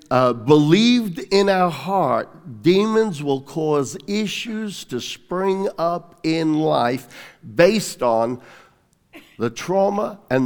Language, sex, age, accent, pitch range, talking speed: English, male, 60-79, American, 130-185 Hz, 110 wpm